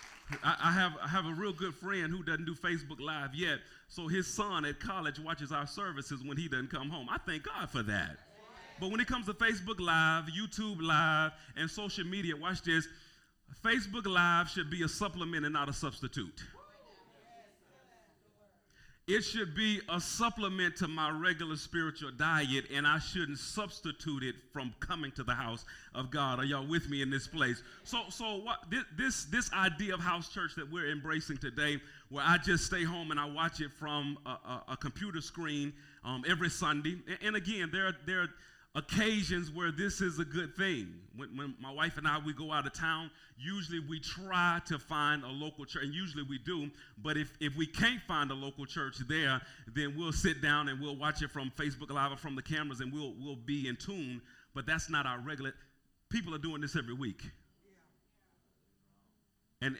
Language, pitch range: English, 140-175 Hz